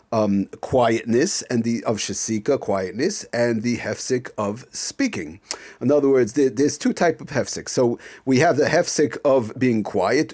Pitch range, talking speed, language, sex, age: 115-160 Hz, 170 wpm, English, male, 50-69